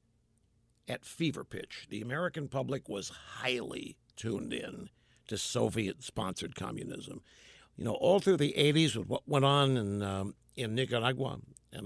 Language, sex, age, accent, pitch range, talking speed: English, male, 60-79, American, 115-150 Hz, 140 wpm